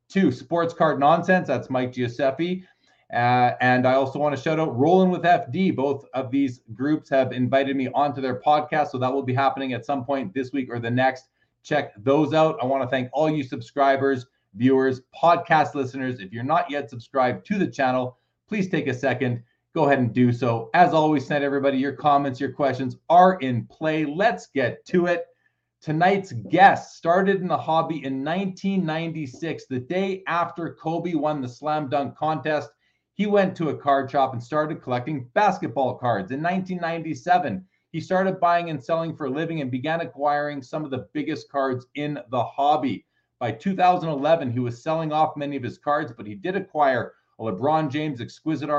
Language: English